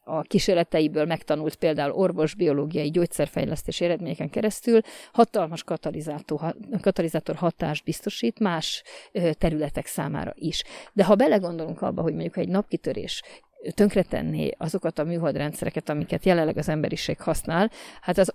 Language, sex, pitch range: Hungarian, female, 160-190 Hz